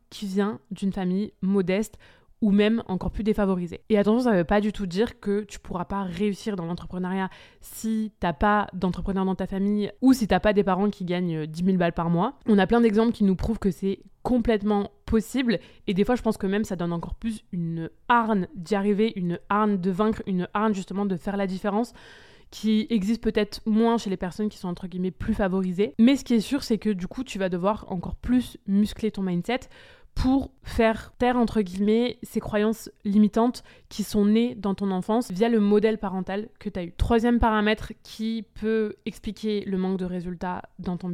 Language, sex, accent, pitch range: French, female, French, 190-220 Hz